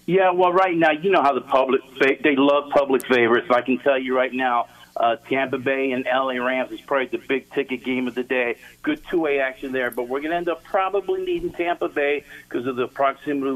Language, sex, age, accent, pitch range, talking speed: English, male, 50-69, American, 120-145 Hz, 240 wpm